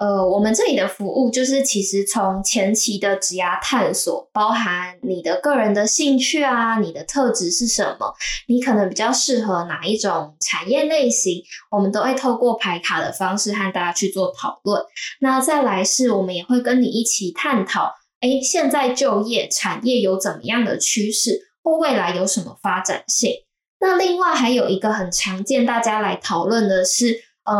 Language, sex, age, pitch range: Chinese, female, 10-29, 200-270 Hz